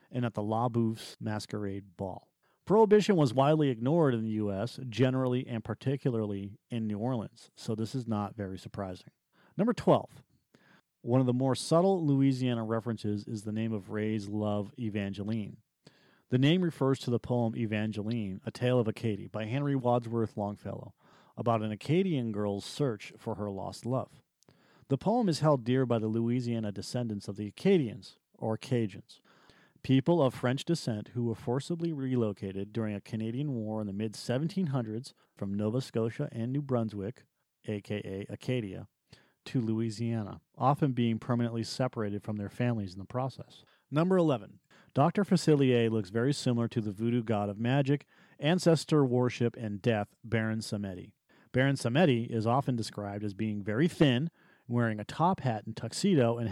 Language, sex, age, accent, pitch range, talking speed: English, male, 40-59, American, 110-130 Hz, 160 wpm